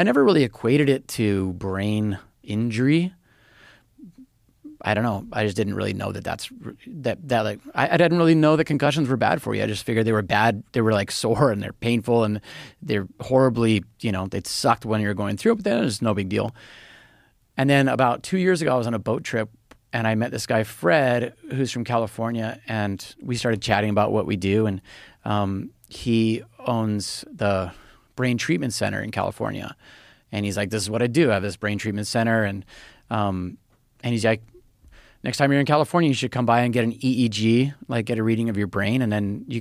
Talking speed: 220 wpm